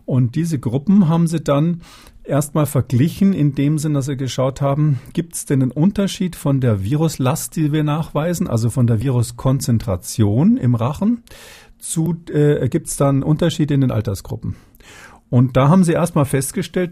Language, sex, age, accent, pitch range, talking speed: German, male, 50-69, German, 120-155 Hz, 165 wpm